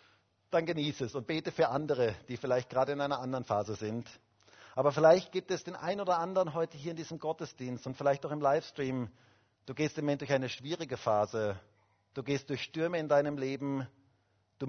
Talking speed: 200 wpm